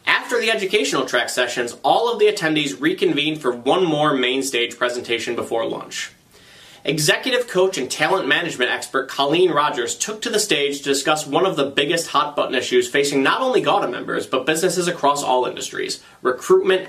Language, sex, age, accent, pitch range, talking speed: English, male, 30-49, American, 130-195 Hz, 180 wpm